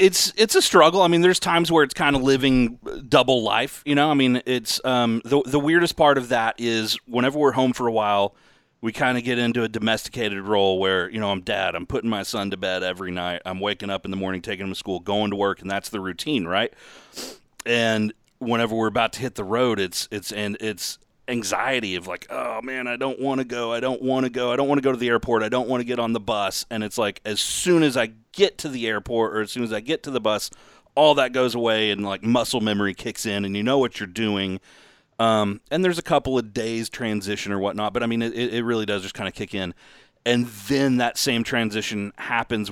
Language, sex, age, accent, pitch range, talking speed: English, male, 30-49, American, 100-125 Hz, 255 wpm